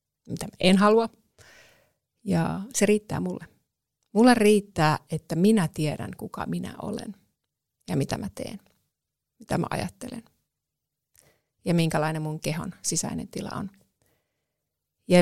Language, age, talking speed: Finnish, 30-49, 120 wpm